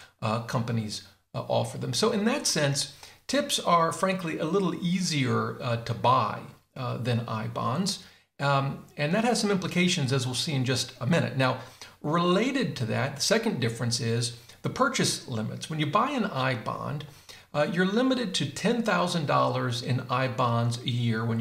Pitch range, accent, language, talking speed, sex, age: 120-175 Hz, American, English, 180 wpm, male, 50-69